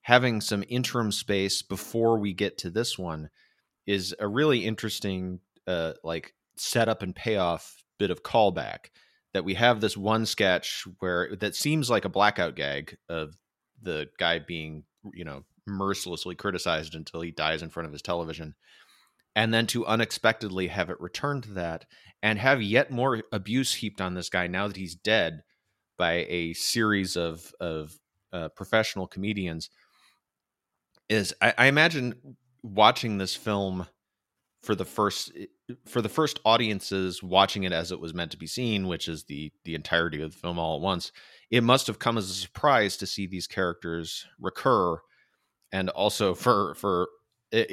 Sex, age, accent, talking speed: male, 30-49, American, 165 wpm